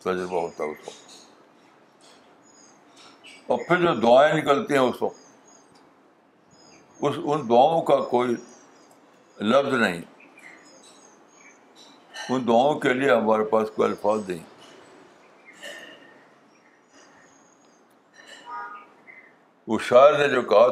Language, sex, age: Urdu, male, 60-79